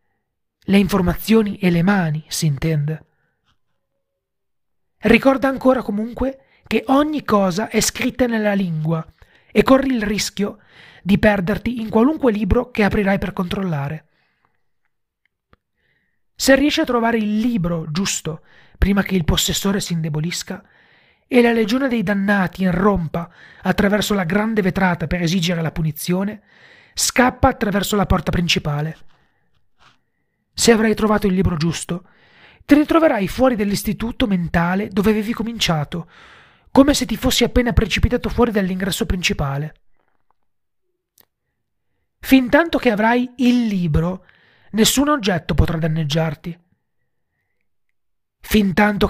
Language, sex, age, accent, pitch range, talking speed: Italian, male, 30-49, native, 175-230 Hz, 115 wpm